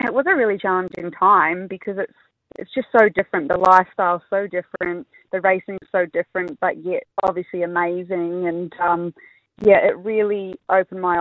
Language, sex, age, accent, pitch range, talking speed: English, female, 20-39, Australian, 180-215 Hz, 170 wpm